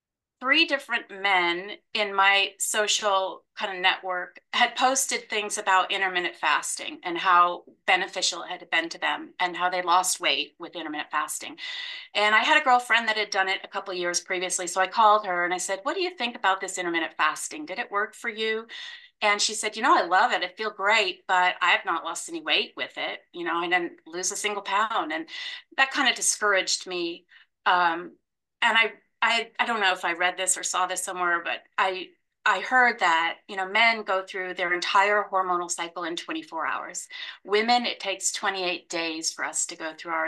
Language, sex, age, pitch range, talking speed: English, female, 30-49, 175-230 Hz, 210 wpm